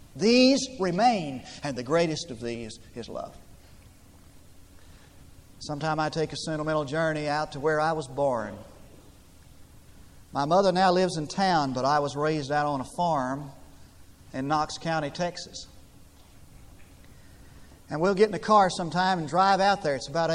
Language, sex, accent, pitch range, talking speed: English, male, American, 125-175 Hz, 155 wpm